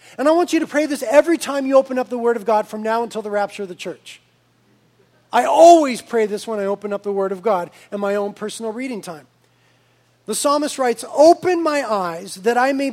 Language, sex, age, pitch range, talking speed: English, male, 40-59, 200-260 Hz, 235 wpm